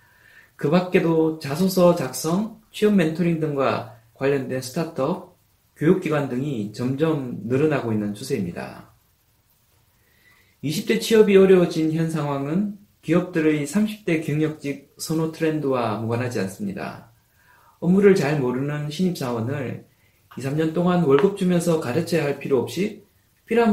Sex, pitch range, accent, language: male, 115-180 Hz, native, Korean